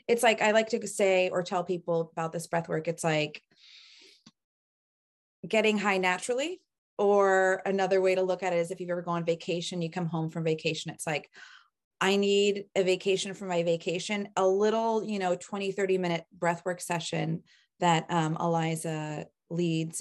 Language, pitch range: English, 165-200 Hz